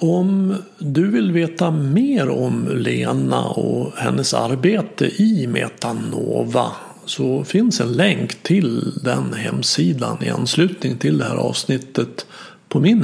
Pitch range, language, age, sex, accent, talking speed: 125-200 Hz, Swedish, 50-69, male, native, 125 wpm